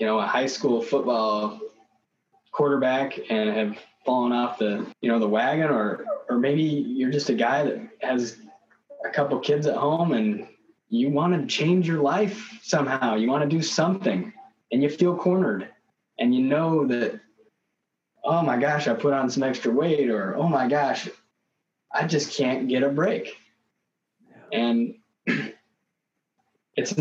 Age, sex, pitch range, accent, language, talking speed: 20-39, male, 120-165 Hz, American, English, 160 wpm